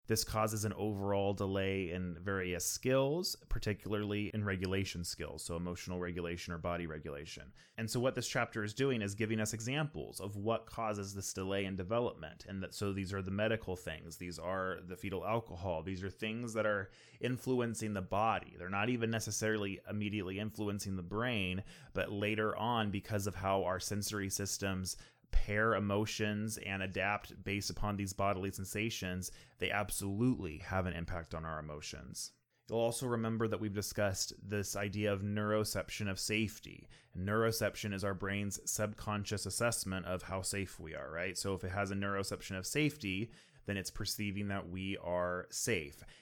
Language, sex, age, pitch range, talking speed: English, male, 20-39, 95-110 Hz, 170 wpm